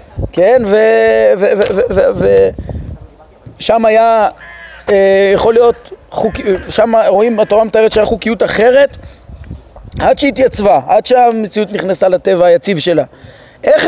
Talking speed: 105 wpm